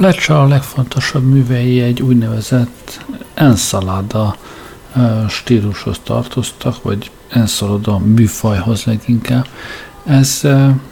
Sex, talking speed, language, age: male, 75 wpm, Hungarian, 50-69